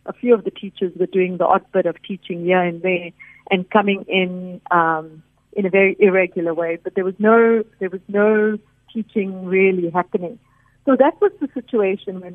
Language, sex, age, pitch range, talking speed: English, female, 50-69, 180-210 Hz, 195 wpm